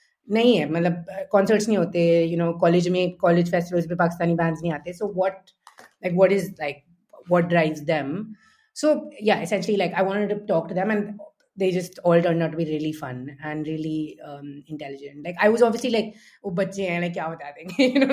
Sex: female